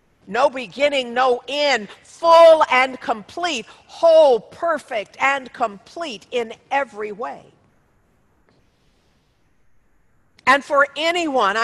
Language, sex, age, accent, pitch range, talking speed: English, female, 50-69, American, 230-295 Hz, 90 wpm